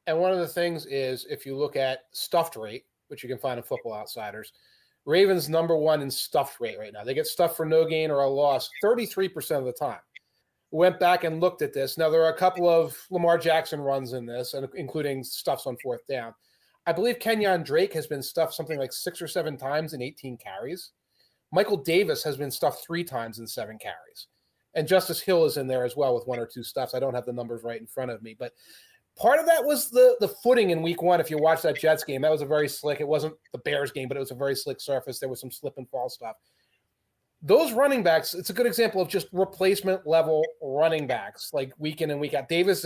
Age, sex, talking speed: 30-49, male, 240 wpm